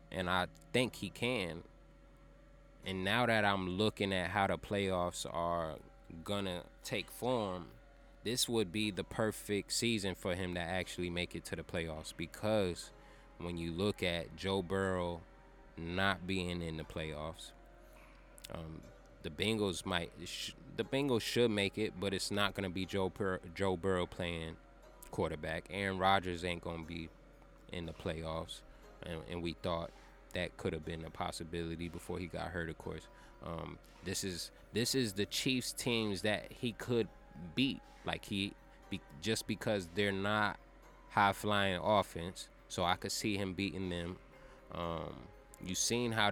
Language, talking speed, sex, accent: English, 160 wpm, male, American